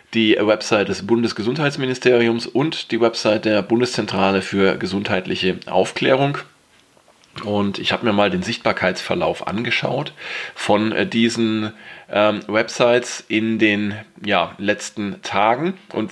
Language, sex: German, male